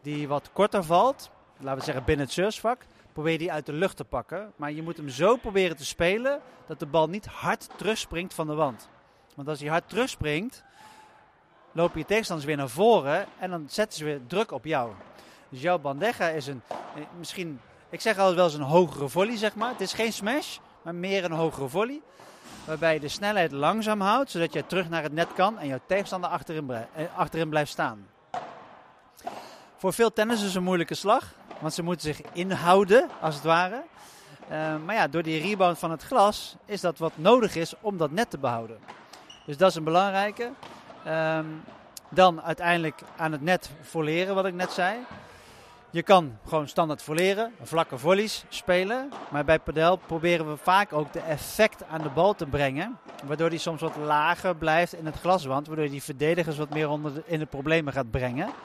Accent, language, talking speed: Dutch, Dutch, 195 wpm